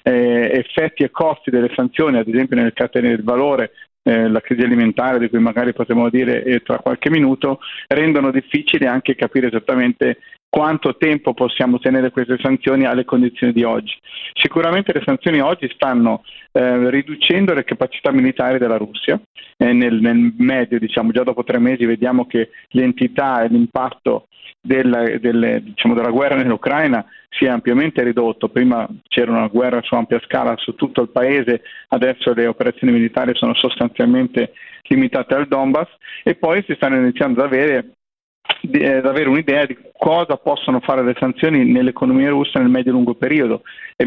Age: 40-59